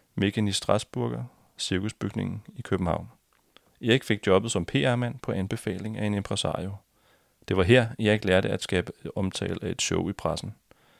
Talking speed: 160 wpm